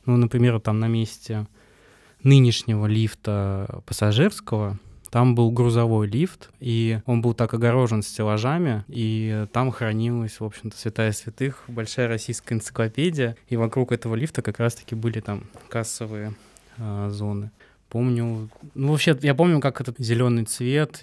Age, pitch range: 20-39, 110-125 Hz